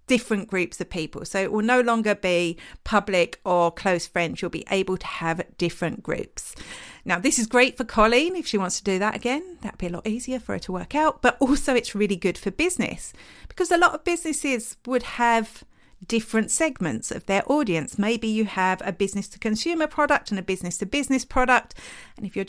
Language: English